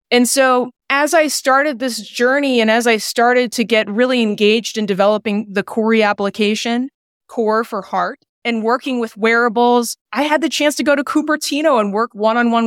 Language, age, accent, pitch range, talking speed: English, 20-39, American, 205-250 Hz, 180 wpm